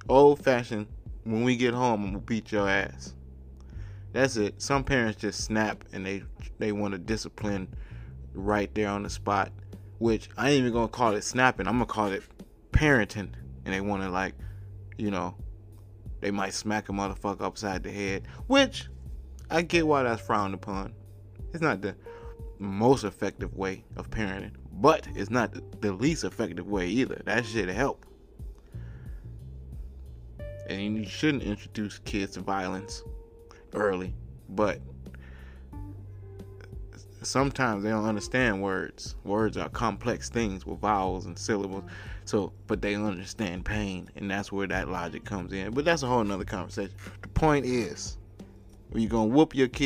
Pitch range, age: 95-115 Hz, 20-39